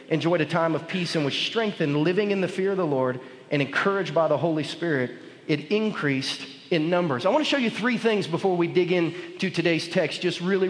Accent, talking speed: American, 225 wpm